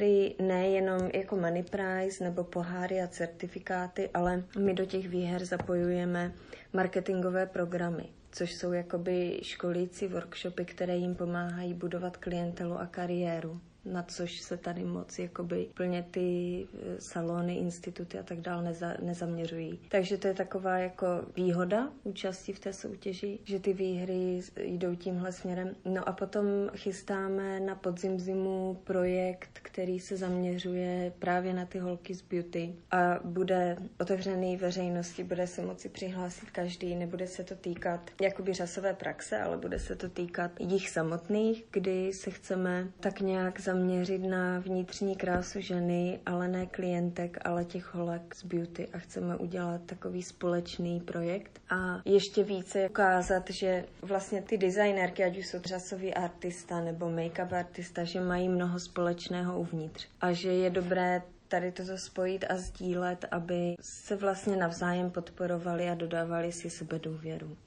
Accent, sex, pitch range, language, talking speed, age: native, female, 175-190 Hz, Czech, 145 wpm, 30-49